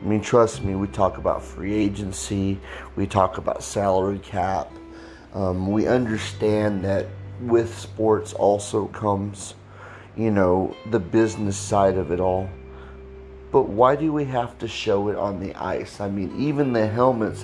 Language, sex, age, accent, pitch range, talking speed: English, male, 30-49, American, 95-115 Hz, 160 wpm